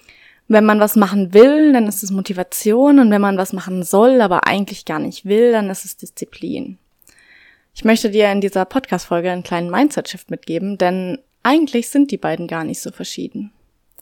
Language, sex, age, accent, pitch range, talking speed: German, female, 20-39, German, 185-240 Hz, 185 wpm